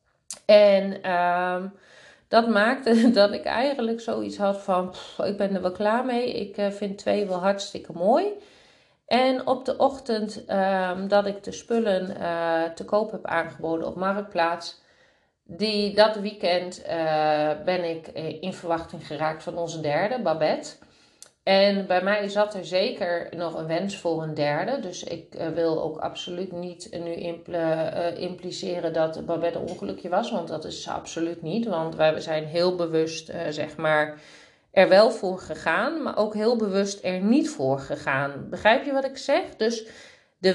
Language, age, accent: Dutch, 40-59, Dutch